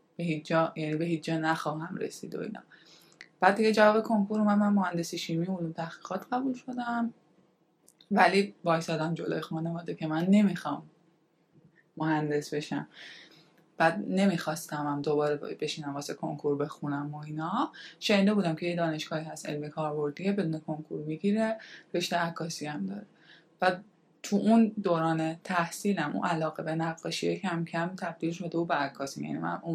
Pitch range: 160-195 Hz